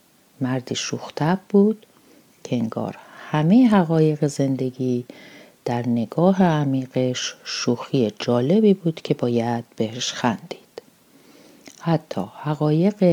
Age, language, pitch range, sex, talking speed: 40-59, Persian, 120-180 Hz, female, 90 wpm